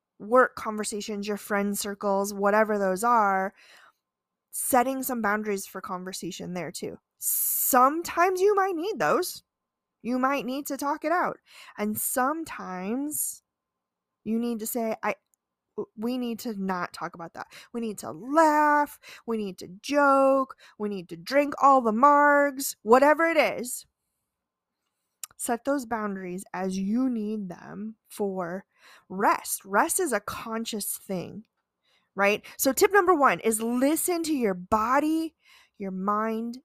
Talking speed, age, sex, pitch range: 140 wpm, 20-39, female, 200-260 Hz